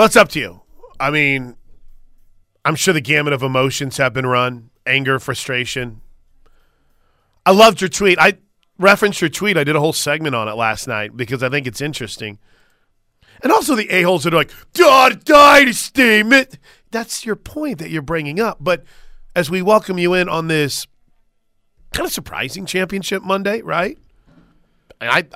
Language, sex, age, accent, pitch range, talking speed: English, male, 40-59, American, 125-185 Hz, 175 wpm